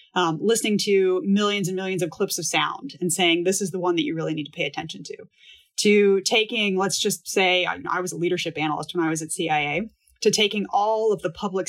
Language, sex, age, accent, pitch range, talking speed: English, female, 20-39, American, 165-205 Hz, 230 wpm